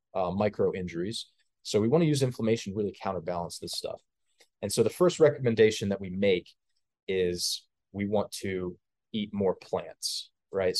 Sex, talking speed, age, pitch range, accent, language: male, 165 wpm, 20-39, 95-120 Hz, American, English